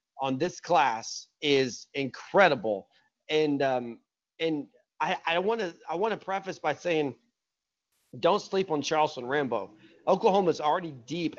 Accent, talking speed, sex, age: American, 125 wpm, male, 30-49